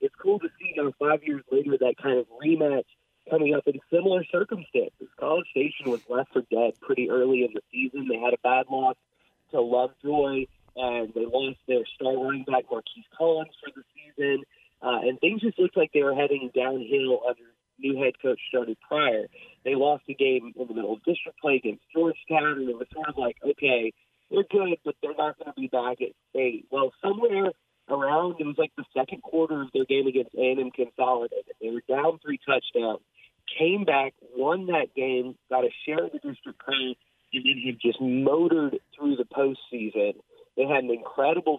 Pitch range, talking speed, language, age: 125-155 Hz, 200 wpm, English, 30-49